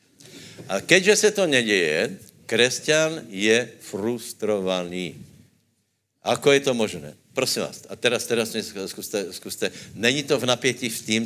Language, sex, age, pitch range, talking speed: Slovak, male, 60-79, 100-120 Hz, 135 wpm